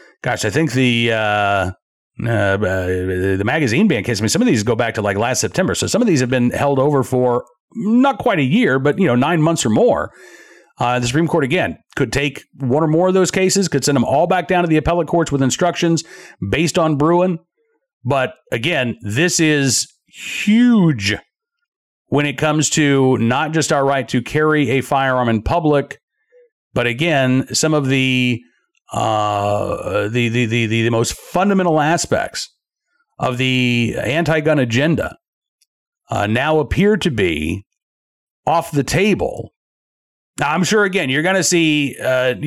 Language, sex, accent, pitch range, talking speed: English, male, American, 125-175 Hz, 175 wpm